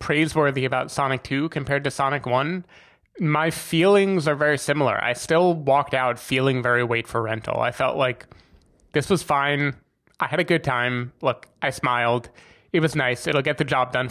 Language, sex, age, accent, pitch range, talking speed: English, male, 20-39, American, 120-150 Hz, 185 wpm